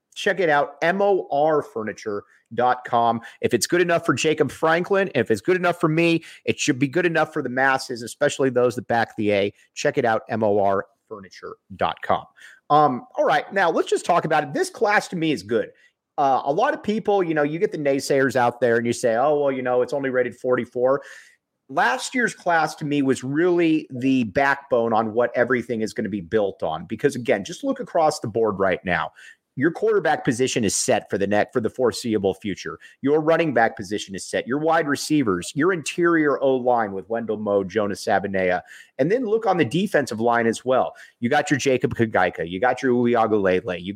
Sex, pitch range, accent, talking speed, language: male, 115-160 Hz, American, 205 wpm, English